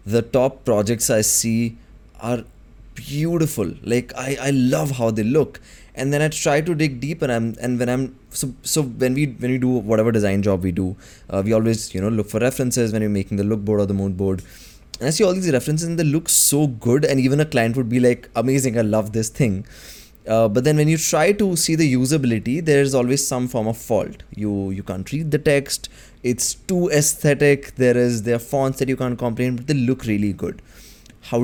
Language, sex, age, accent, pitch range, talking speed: English, male, 20-39, Indian, 110-145 Hz, 230 wpm